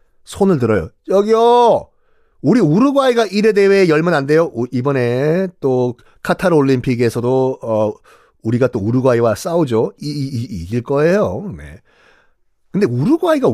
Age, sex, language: 40-59, male, Korean